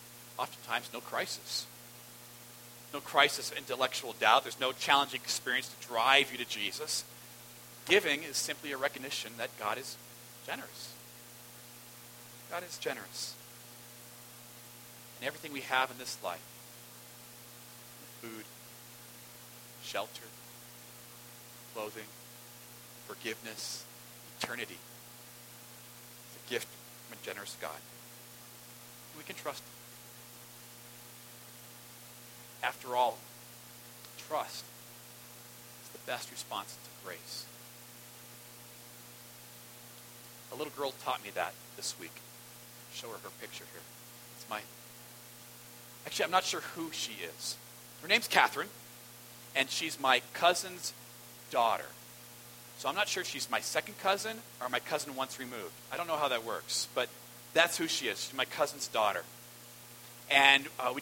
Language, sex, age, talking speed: English, male, 40-59, 120 wpm